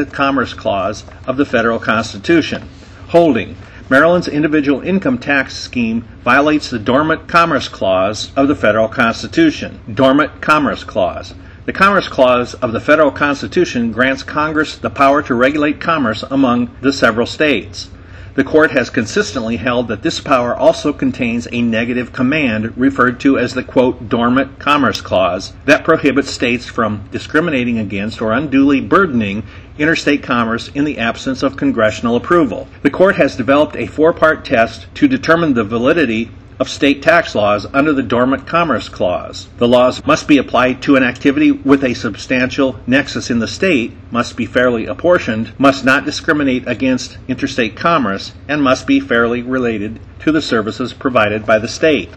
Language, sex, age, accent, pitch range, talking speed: English, male, 50-69, American, 115-145 Hz, 160 wpm